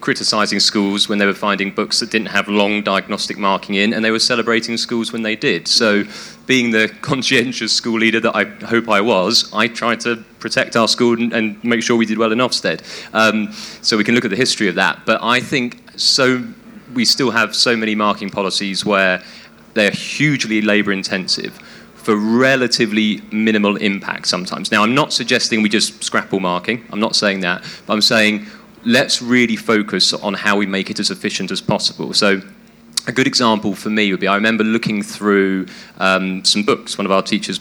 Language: English